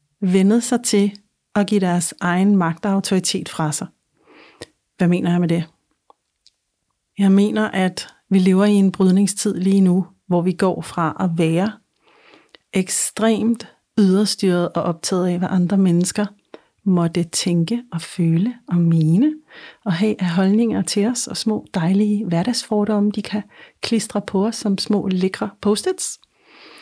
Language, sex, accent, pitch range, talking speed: Danish, female, native, 180-215 Hz, 145 wpm